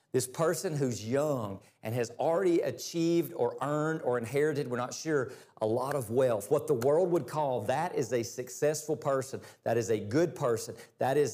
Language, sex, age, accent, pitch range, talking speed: English, male, 40-59, American, 130-170 Hz, 185 wpm